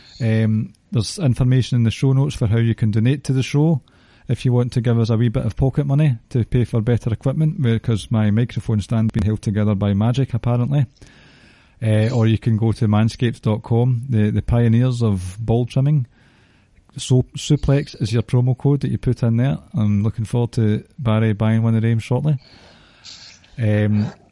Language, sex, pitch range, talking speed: English, male, 110-130 Hz, 195 wpm